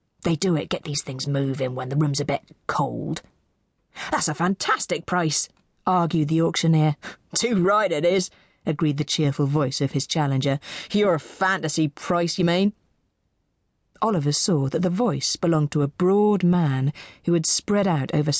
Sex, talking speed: female, 170 wpm